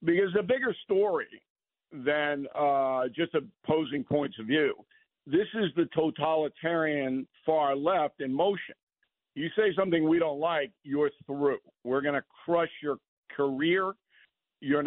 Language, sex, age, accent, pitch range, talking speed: English, male, 50-69, American, 140-190 Hz, 140 wpm